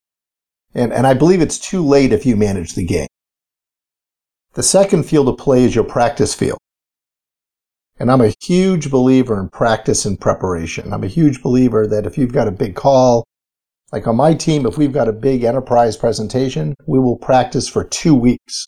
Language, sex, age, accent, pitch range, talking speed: English, male, 50-69, American, 105-140 Hz, 185 wpm